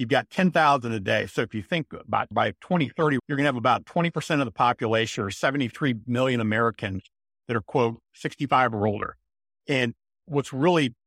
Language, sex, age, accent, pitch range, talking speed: English, male, 50-69, American, 115-140 Hz, 185 wpm